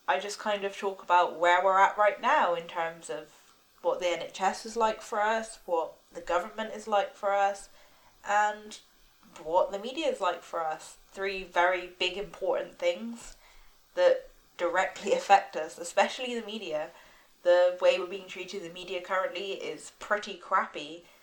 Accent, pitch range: British, 180-220 Hz